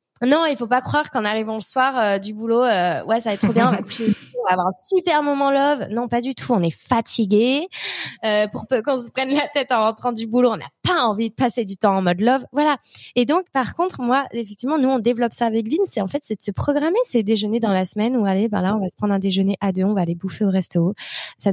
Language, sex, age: French, female, 20-39